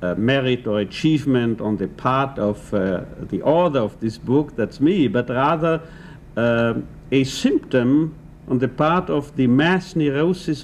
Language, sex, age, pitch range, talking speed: English, male, 60-79, 120-165 Hz, 160 wpm